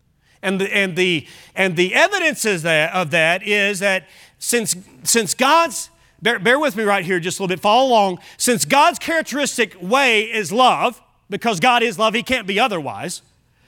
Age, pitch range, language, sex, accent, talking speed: 40-59, 175-245 Hz, English, male, American, 185 wpm